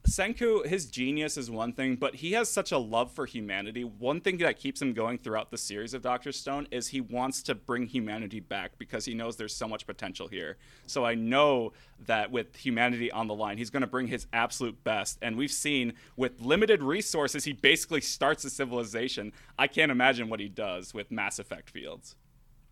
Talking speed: 205 wpm